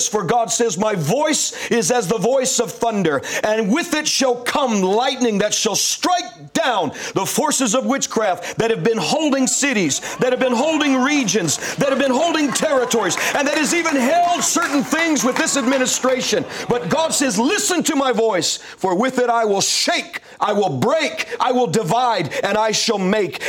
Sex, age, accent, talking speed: male, 40-59, American, 185 wpm